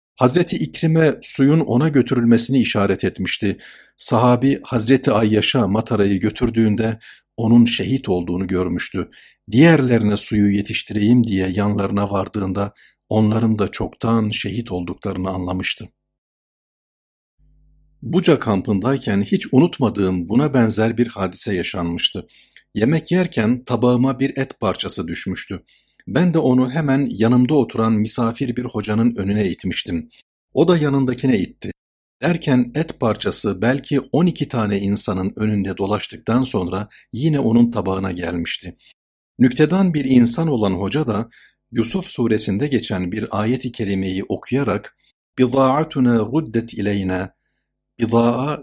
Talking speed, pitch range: 110 wpm, 100-130 Hz